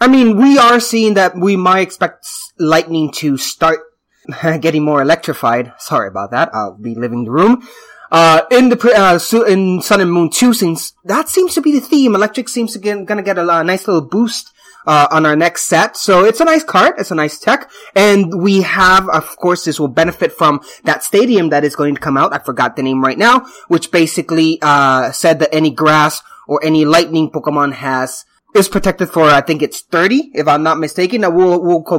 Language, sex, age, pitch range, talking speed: English, male, 20-39, 155-235 Hz, 210 wpm